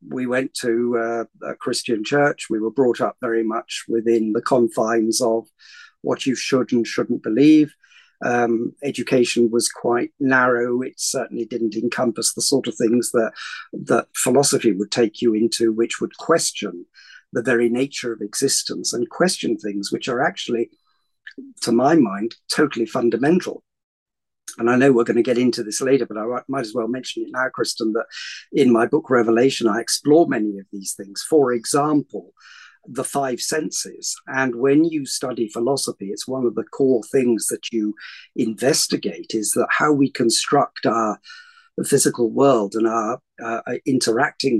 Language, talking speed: English, 165 wpm